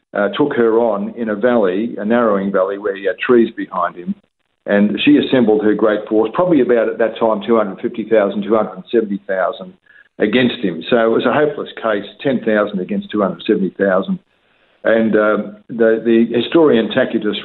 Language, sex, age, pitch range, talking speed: English, male, 50-69, 100-120 Hz, 195 wpm